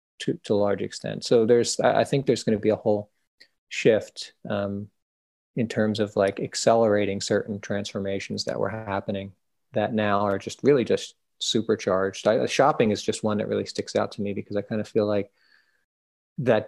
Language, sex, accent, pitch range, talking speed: English, male, American, 105-130 Hz, 185 wpm